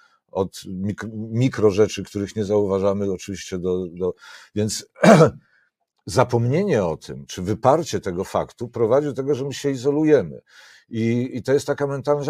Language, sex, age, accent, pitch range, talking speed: Polish, male, 50-69, native, 110-140 Hz, 150 wpm